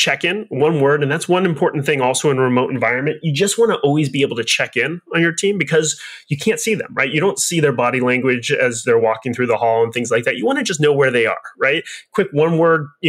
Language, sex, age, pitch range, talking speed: English, male, 30-49, 130-180 Hz, 285 wpm